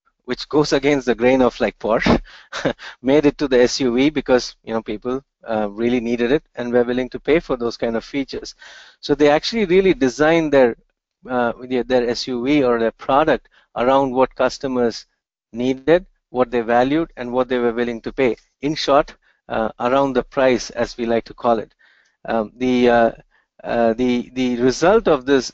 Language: English